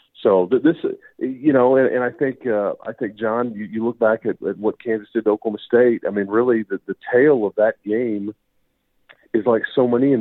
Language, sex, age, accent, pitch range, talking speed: English, male, 40-59, American, 100-125 Hz, 205 wpm